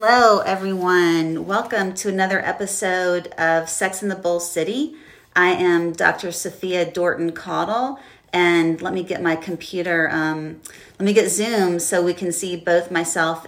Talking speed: 155 wpm